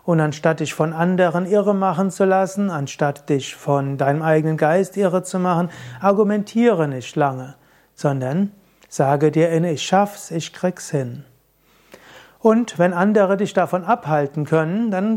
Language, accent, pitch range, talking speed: German, German, 150-185 Hz, 150 wpm